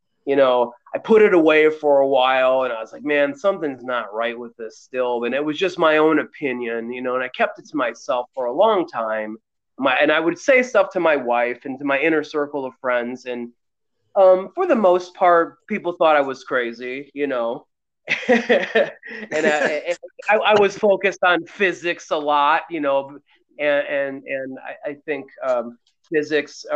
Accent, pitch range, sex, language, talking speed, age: American, 125-170 Hz, male, English, 200 wpm, 30-49